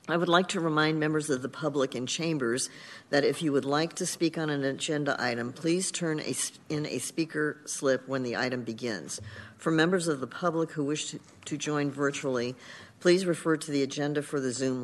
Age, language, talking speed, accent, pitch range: 50-69, English, 215 wpm, American, 125-155 Hz